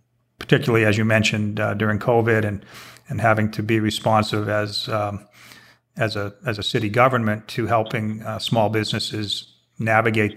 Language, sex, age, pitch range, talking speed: English, male, 40-59, 105-115 Hz, 155 wpm